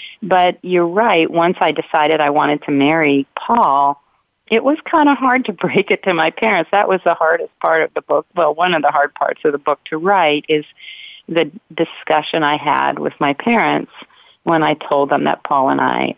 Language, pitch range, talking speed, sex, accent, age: English, 150-200 Hz, 210 wpm, female, American, 40-59